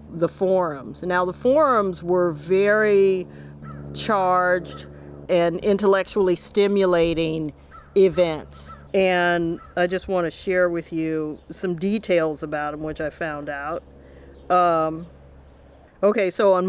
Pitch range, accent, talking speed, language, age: 160-195 Hz, American, 115 wpm, English, 40-59